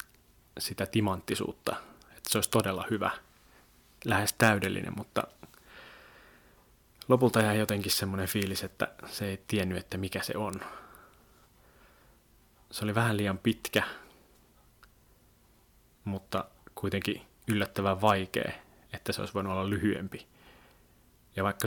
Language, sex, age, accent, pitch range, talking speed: Finnish, male, 30-49, native, 95-105 Hz, 110 wpm